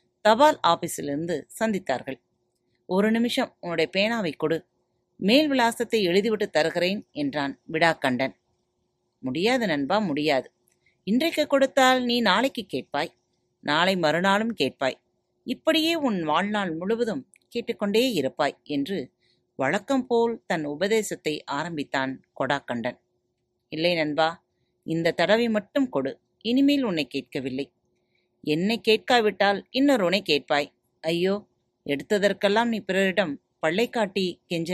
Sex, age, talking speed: female, 30-49, 100 wpm